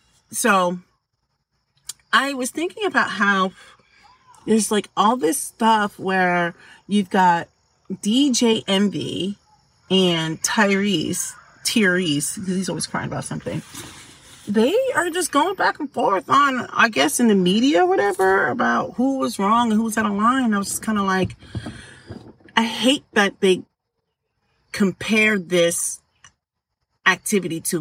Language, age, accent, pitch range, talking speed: English, 40-59, American, 175-230 Hz, 140 wpm